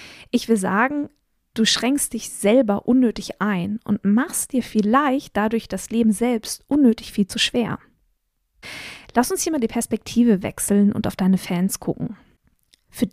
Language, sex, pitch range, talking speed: German, female, 205-250 Hz, 155 wpm